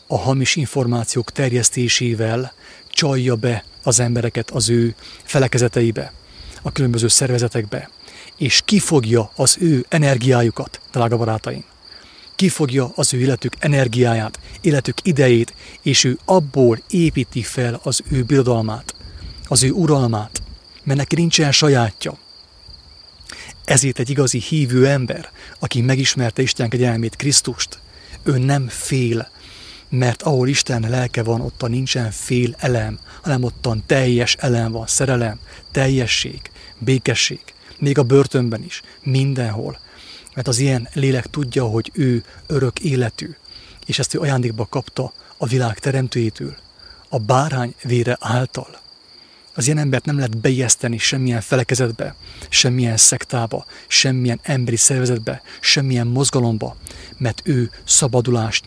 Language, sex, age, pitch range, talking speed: English, male, 30-49, 115-135 Hz, 120 wpm